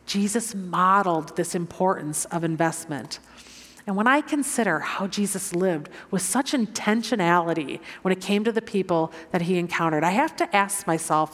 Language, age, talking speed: English, 40-59, 160 wpm